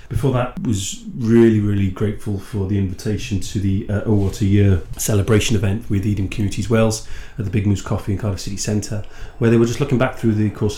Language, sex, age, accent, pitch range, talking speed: English, male, 30-49, British, 95-110 Hz, 225 wpm